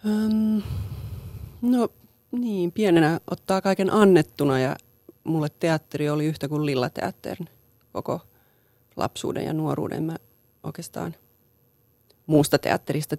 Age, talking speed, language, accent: 30-49, 100 wpm, Finnish, native